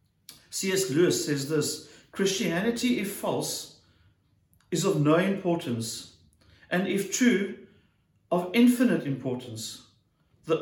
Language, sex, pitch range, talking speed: English, male, 140-185 Hz, 100 wpm